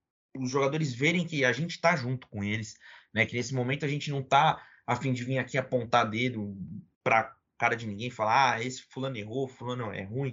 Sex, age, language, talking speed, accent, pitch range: male, 20-39, Portuguese, 220 wpm, Brazilian, 115-160 Hz